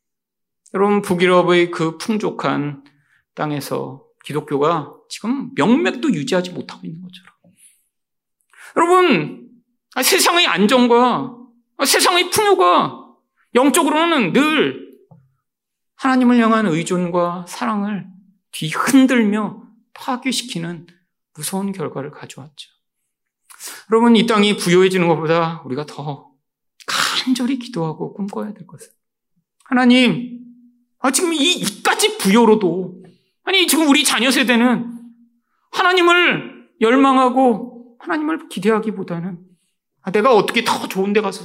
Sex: male